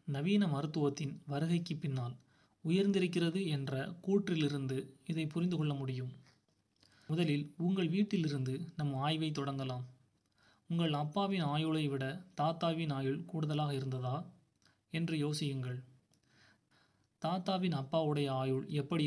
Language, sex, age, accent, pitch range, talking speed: Tamil, male, 30-49, native, 135-175 Hz, 100 wpm